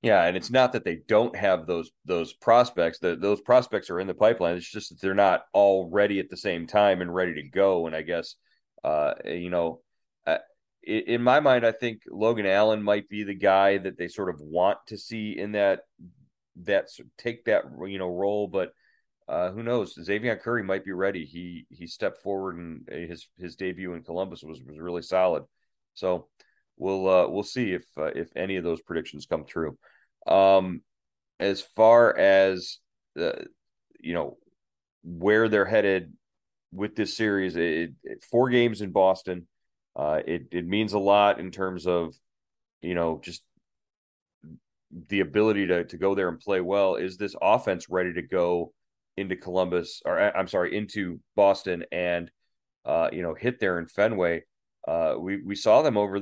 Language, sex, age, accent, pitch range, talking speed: English, male, 30-49, American, 90-105 Hz, 185 wpm